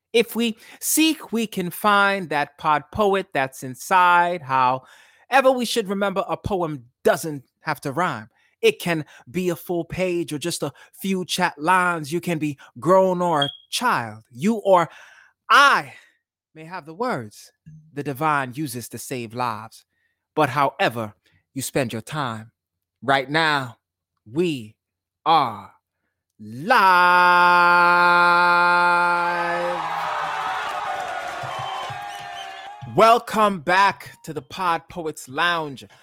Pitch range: 130-175 Hz